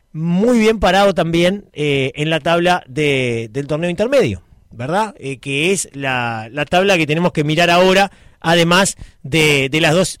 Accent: Argentinian